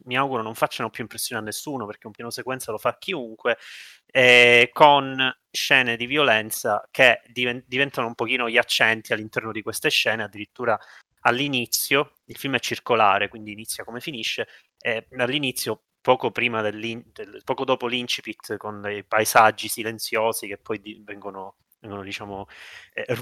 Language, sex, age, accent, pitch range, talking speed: Italian, male, 20-39, native, 110-130 Hz, 155 wpm